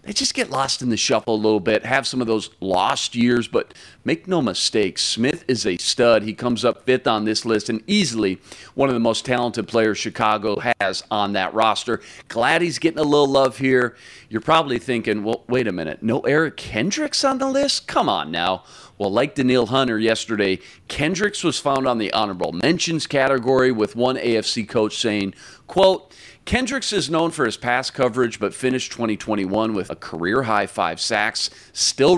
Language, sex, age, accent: English, male, 40-59, American